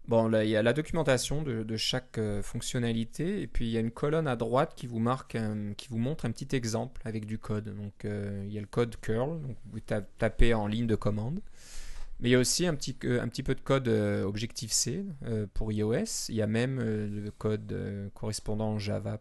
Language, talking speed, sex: French, 220 wpm, male